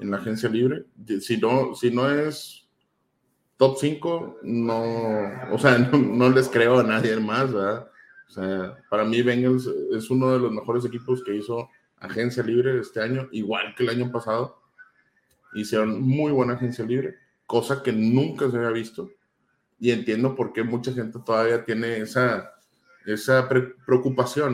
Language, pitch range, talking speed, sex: Spanish, 110-130 Hz, 160 wpm, male